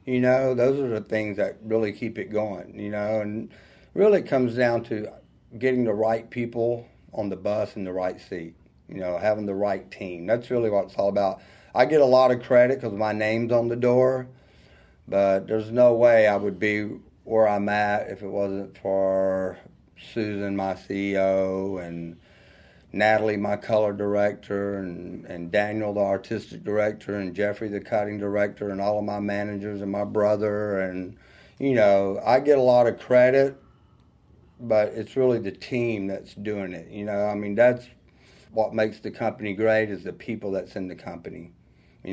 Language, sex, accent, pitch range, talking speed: English, male, American, 100-120 Hz, 185 wpm